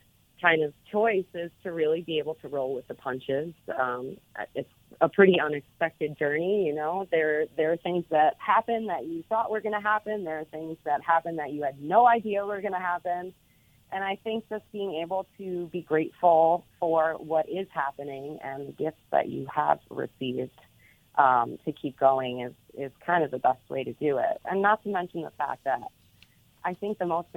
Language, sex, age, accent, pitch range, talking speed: English, female, 30-49, American, 135-175 Hz, 205 wpm